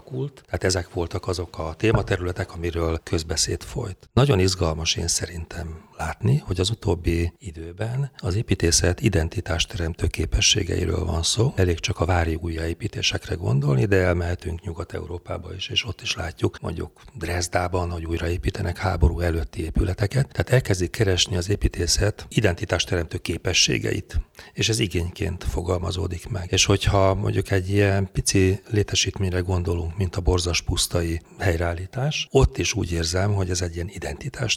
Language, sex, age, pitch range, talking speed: Hungarian, male, 40-59, 85-100 Hz, 140 wpm